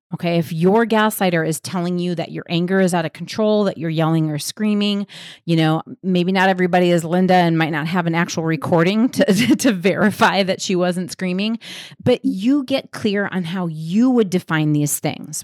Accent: American